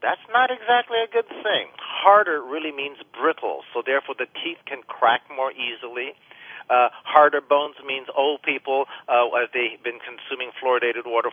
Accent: American